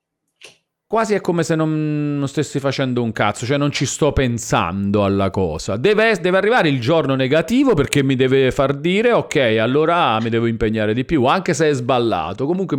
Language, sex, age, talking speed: Italian, male, 40-59, 185 wpm